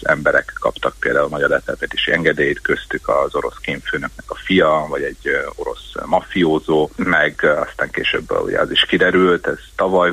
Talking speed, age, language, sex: 150 wpm, 30-49, Hungarian, male